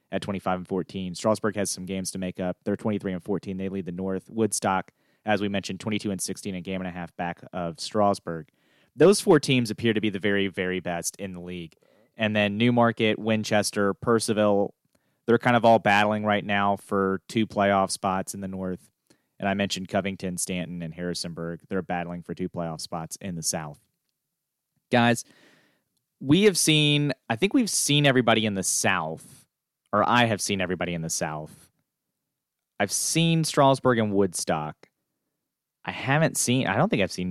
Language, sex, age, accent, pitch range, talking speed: English, male, 30-49, American, 90-110 Hz, 185 wpm